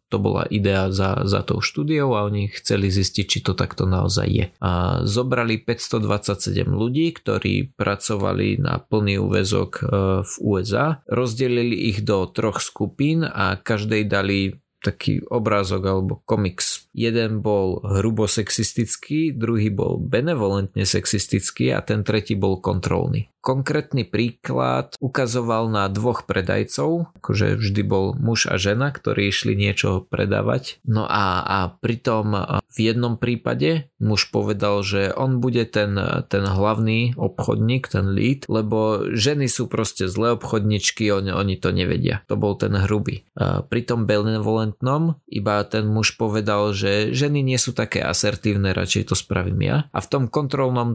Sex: male